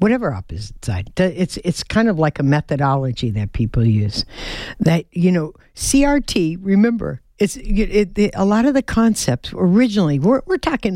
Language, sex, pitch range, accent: English, female, 155-215 Hz, American